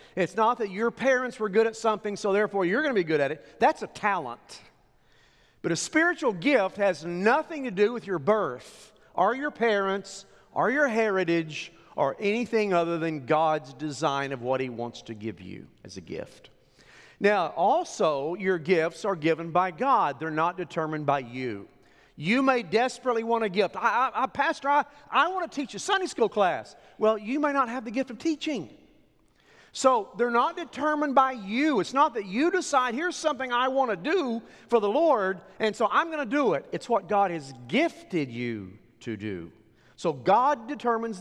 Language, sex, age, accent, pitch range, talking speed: English, male, 40-59, American, 155-250 Hz, 195 wpm